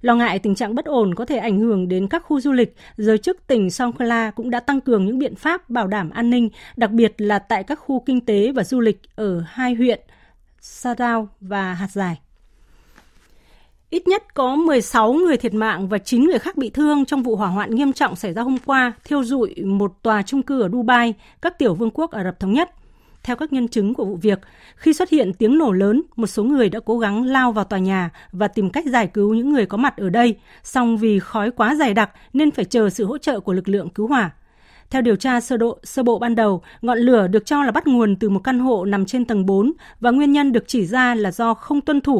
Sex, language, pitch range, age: female, Vietnamese, 205-260 Hz, 20-39